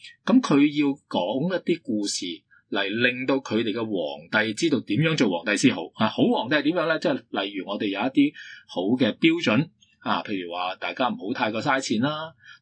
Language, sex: Chinese, male